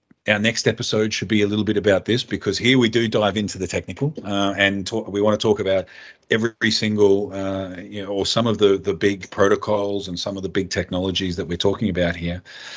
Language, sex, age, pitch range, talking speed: English, male, 40-59, 95-115 Hz, 230 wpm